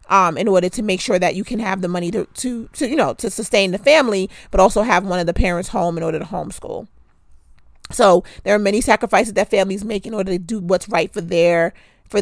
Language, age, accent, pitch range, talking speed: English, 30-49, American, 180-220 Hz, 245 wpm